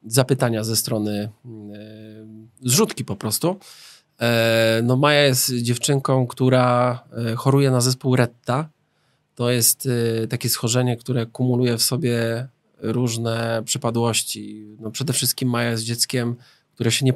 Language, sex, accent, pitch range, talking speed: Polish, male, native, 115-135 Hz, 110 wpm